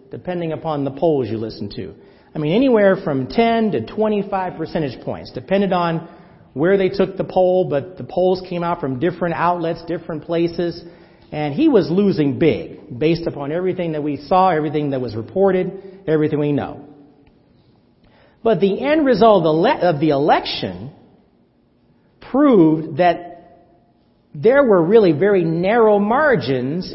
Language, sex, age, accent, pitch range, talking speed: English, male, 40-59, American, 155-210 Hz, 145 wpm